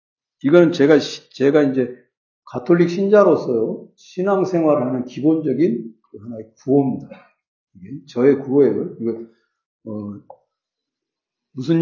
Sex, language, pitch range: male, Korean, 130-195 Hz